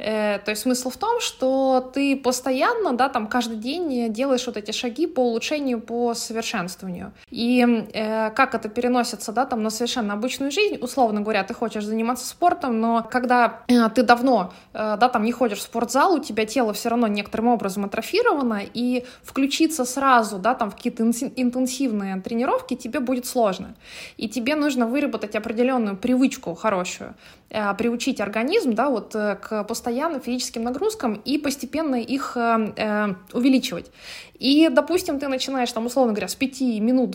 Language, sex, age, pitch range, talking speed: Russian, female, 20-39, 220-260 Hz, 145 wpm